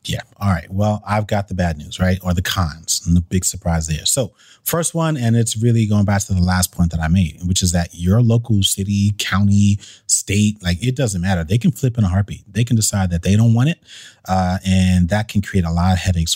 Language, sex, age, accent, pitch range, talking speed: English, male, 30-49, American, 90-110 Hz, 250 wpm